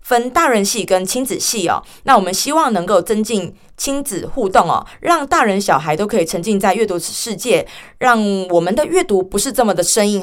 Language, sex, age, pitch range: Chinese, female, 20-39, 185-245 Hz